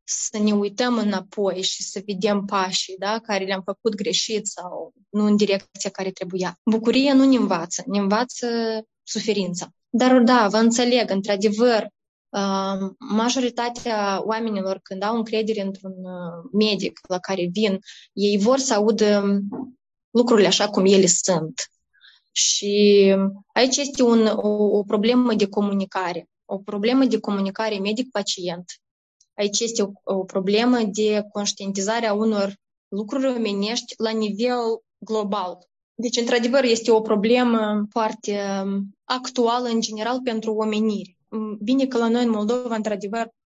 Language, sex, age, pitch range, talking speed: Romanian, female, 20-39, 195-230 Hz, 130 wpm